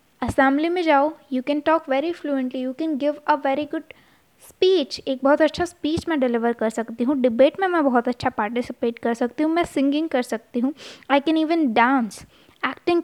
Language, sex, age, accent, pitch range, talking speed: Hindi, female, 20-39, native, 245-305 Hz, 200 wpm